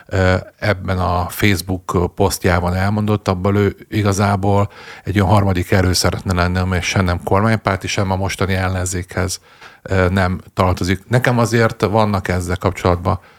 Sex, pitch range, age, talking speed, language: male, 95-105 Hz, 50-69, 130 wpm, Hungarian